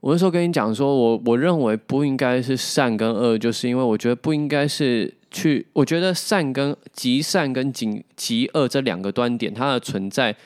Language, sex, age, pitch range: Chinese, male, 20-39, 115-160 Hz